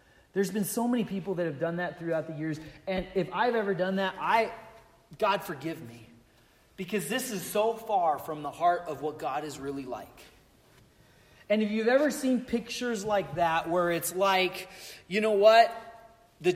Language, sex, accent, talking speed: English, male, American, 185 wpm